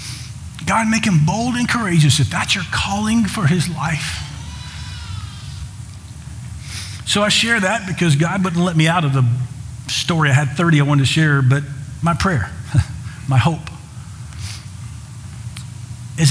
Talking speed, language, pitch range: 145 wpm, English, 120-165 Hz